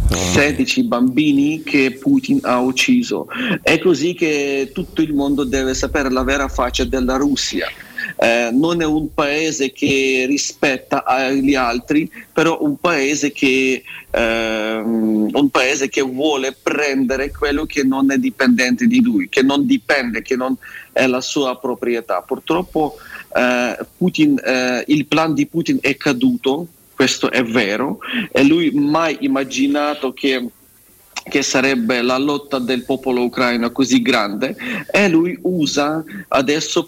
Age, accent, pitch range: 40-59, native, 130-175 Hz